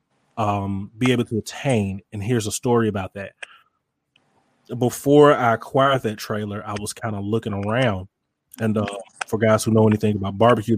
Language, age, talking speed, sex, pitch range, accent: English, 20-39, 175 wpm, male, 100-115 Hz, American